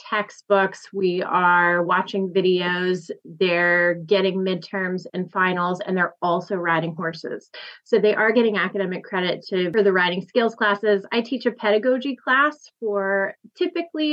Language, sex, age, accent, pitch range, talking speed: English, female, 30-49, American, 185-215 Hz, 145 wpm